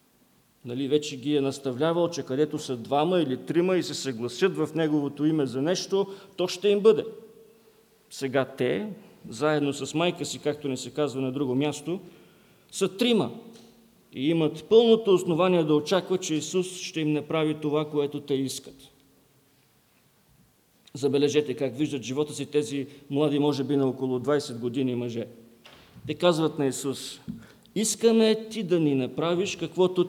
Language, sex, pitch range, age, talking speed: English, male, 140-190 Hz, 40-59, 155 wpm